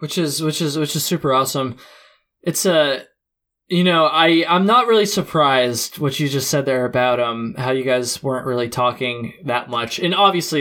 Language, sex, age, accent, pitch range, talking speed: English, male, 20-39, American, 130-170 Hz, 200 wpm